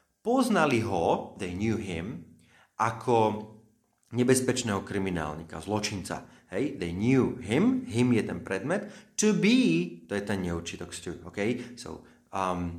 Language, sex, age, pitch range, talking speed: Slovak, male, 30-49, 90-125 Hz, 120 wpm